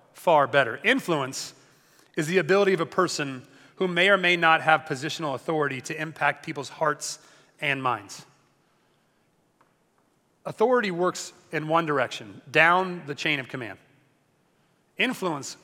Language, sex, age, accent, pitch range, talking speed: English, male, 30-49, American, 145-185 Hz, 130 wpm